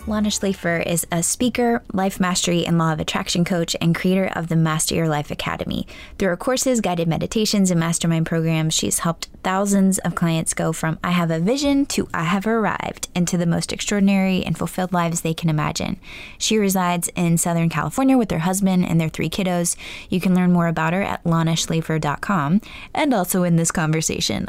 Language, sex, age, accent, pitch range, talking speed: English, female, 20-39, American, 160-195 Hz, 190 wpm